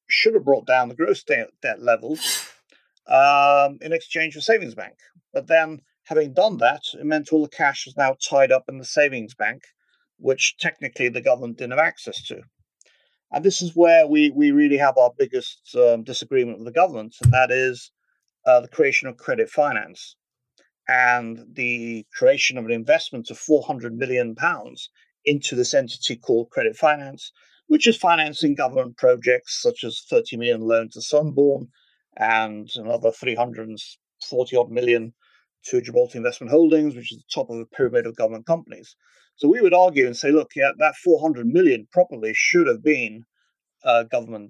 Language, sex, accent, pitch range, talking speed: English, male, British, 125-190 Hz, 170 wpm